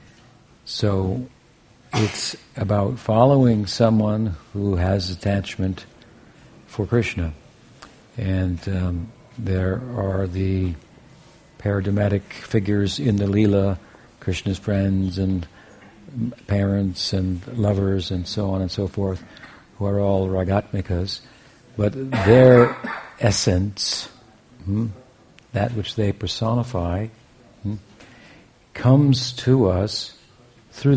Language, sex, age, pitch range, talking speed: English, male, 60-79, 95-115 Hz, 95 wpm